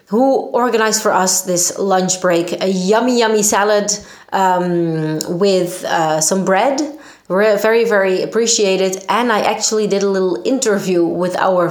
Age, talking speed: 20-39, 145 wpm